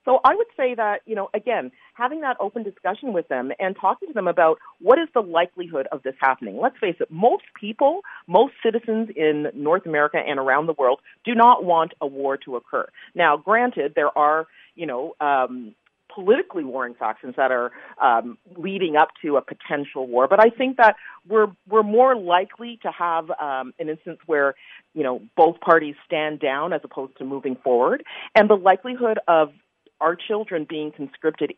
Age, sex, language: 40-59, female, English